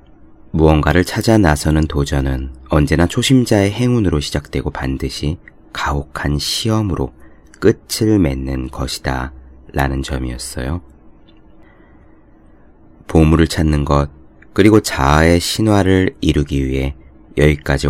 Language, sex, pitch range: Korean, male, 65-85 Hz